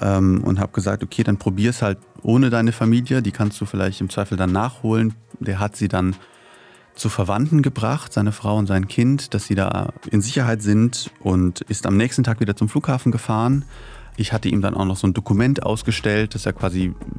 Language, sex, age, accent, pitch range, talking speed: German, male, 30-49, German, 100-120 Hz, 205 wpm